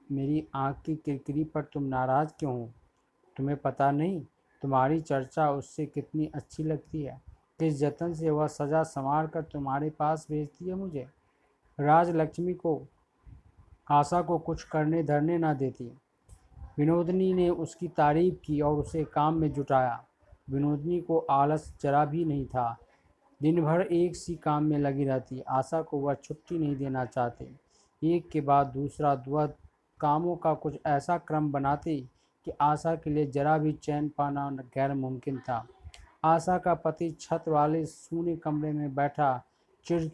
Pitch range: 135-155 Hz